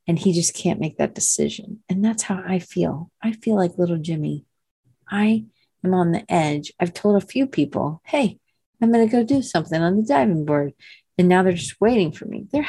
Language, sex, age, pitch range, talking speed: English, female, 40-59, 155-205 Hz, 220 wpm